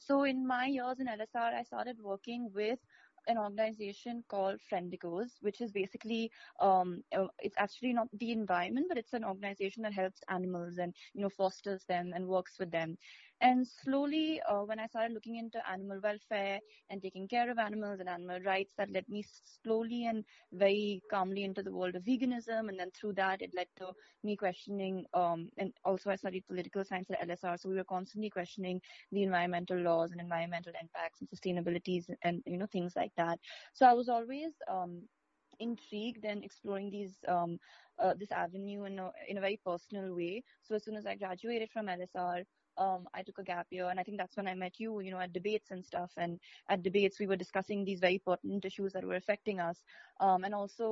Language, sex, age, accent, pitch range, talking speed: English, female, 20-39, Indian, 185-220 Hz, 200 wpm